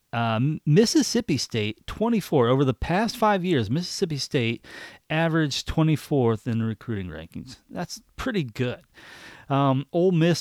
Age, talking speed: 40-59, 125 wpm